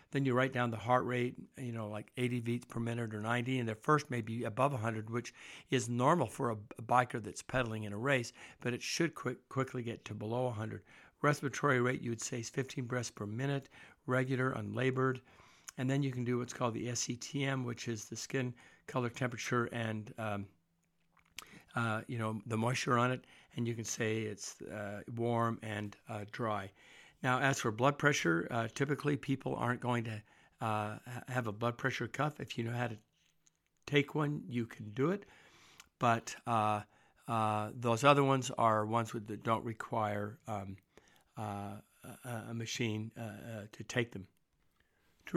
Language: English